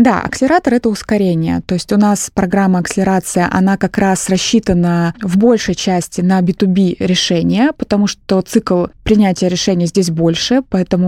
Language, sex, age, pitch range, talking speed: Russian, female, 20-39, 180-220 Hz, 150 wpm